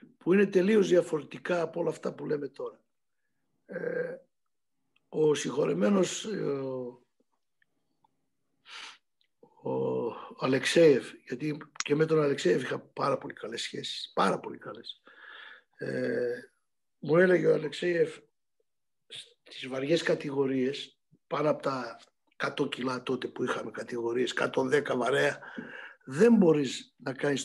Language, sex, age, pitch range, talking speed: Greek, male, 60-79, 155-240 Hz, 105 wpm